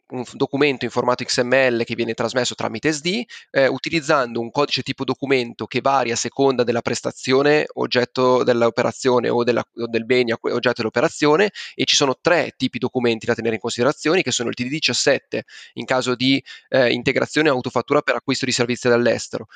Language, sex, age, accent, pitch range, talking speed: Italian, male, 20-39, native, 120-140 Hz, 170 wpm